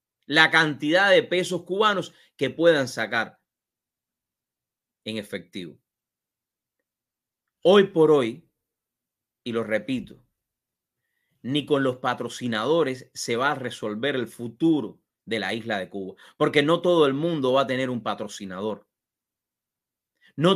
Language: English